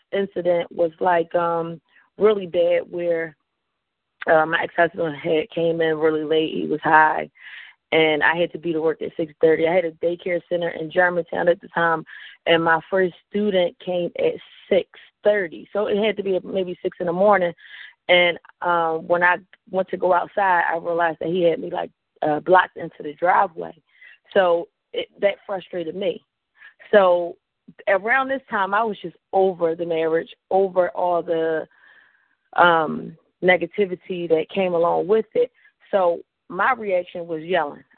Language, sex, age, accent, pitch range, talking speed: English, female, 20-39, American, 170-205 Hz, 160 wpm